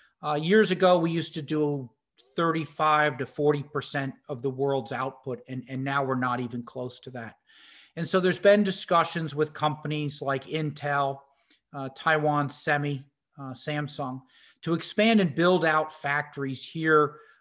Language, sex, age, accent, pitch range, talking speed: English, male, 40-59, American, 140-170 Hz, 150 wpm